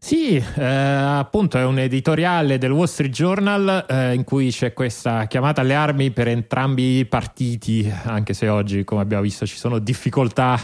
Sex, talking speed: male, 175 wpm